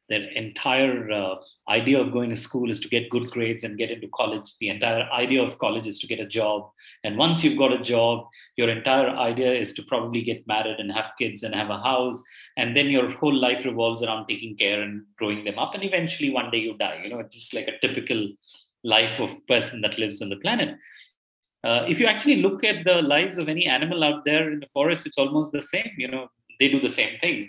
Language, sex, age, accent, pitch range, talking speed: English, male, 30-49, Indian, 115-165 Hz, 240 wpm